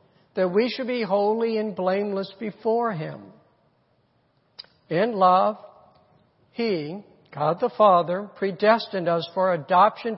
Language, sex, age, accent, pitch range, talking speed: English, male, 60-79, American, 165-220 Hz, 110 wpm